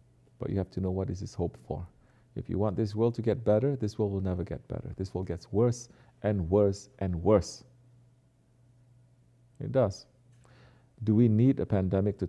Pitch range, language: 105-125 Hz, English